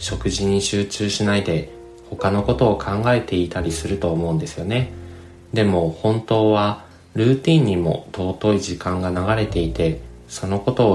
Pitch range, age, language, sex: 85-110 Hz, 20-39, Japanese, male